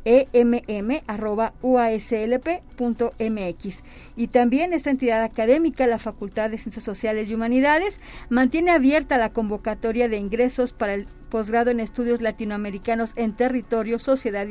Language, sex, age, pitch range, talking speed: Spanish, female, 40-59, 225-260 Hz, 115 wpm